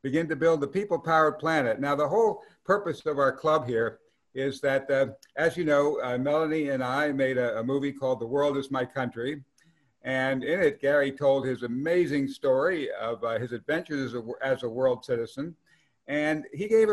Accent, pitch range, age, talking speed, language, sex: American, 130-155 Hz, 60-79, 200 wpm, English, male